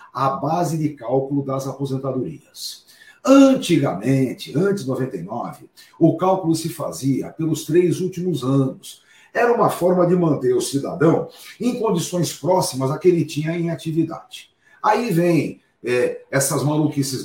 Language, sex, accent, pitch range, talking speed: Portuguese, male, Brazilian, 145-205 Hz, 135 wpm